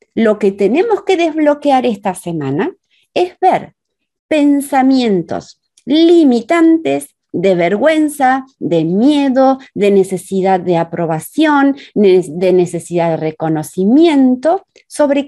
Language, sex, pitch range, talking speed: Spanish, female, 180-275 Hz, 95 wpm